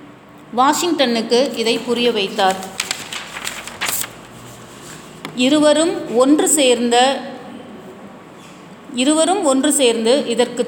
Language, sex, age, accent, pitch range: Tamil, female, 30-49, native, 220-275 Hz